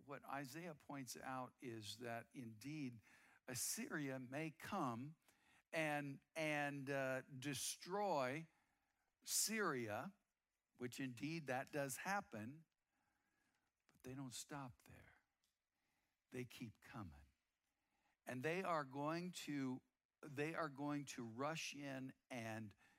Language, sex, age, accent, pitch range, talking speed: English, male, 60-79, American, 125-155 Hz, 105 wpm